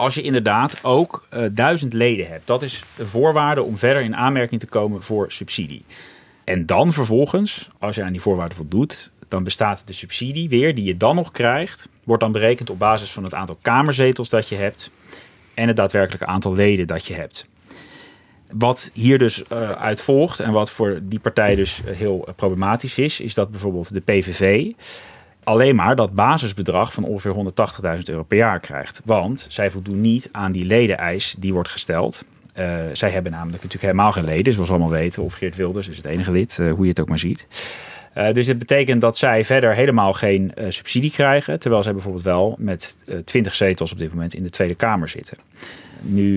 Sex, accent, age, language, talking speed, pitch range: male, Dutch, 30-49, Dutch, 200 wpm, 95-115 Hz